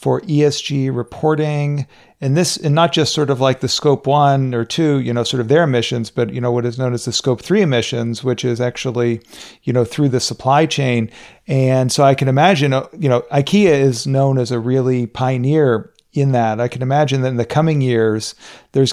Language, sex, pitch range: English, male, 120-140 Hz